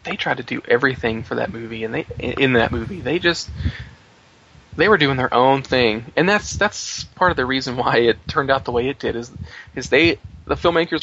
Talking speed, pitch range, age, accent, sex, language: 225 wpm, 110-130 Hz, 20-39, American, male, English